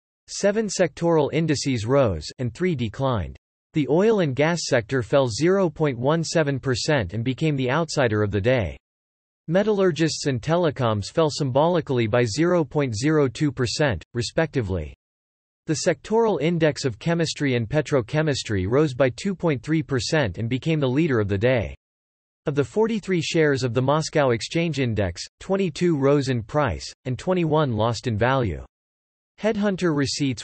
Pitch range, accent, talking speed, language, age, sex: 115-160 Hz, American, 130 wpm, English, 40-59, male